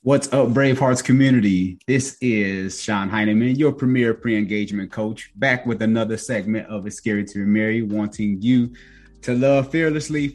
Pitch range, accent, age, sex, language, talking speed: 105-135 Hz, American, 30-49, male, English, 150 wpm